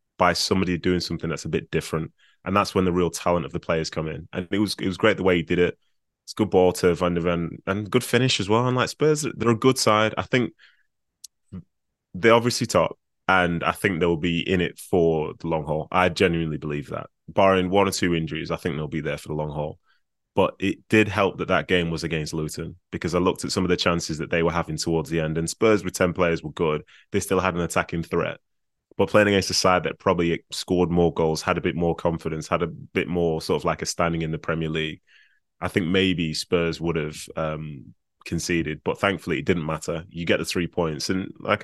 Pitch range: 80-95 Hz